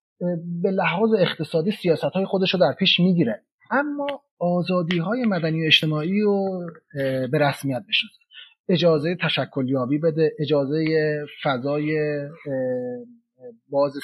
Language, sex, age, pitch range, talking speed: Persian, male, 30-49, 145-200 Hz, 110 wpm